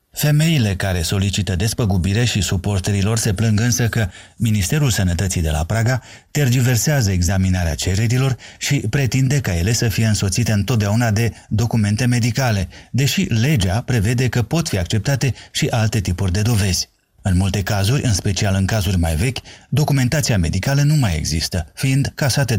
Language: Romanian